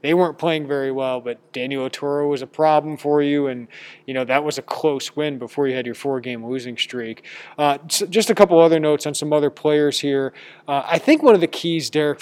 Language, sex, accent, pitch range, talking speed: English, male, American, 130-160 Hz, 230 wpm